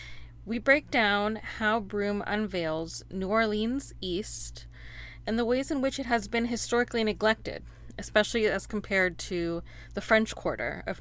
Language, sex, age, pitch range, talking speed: English, female, 20-39, 185-230 Hz, 145 wpm